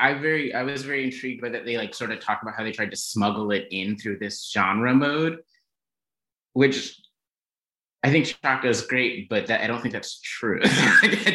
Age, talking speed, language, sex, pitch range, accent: 20-39, 200 wpm, English, male, 95-125 Hz, American